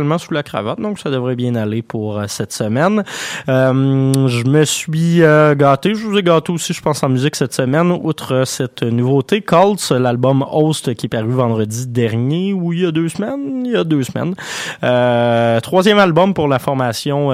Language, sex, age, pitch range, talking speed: French, male, 20-39, 120-165 Hz, 195 wpm